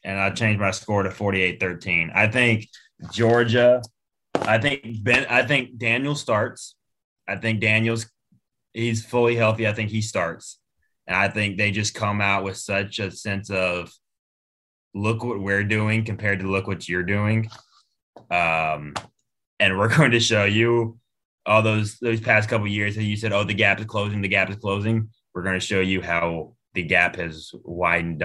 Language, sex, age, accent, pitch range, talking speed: English, male, 20-39, American, 90-110 Hz, 185 wpm